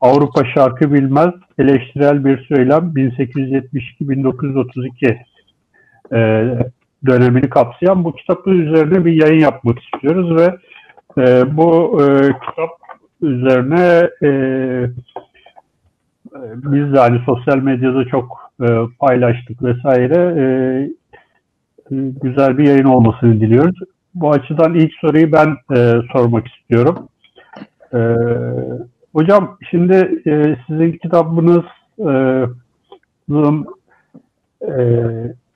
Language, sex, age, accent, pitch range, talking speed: Turkish, male, 60-79, native, 125-160 Hz, 90 wpm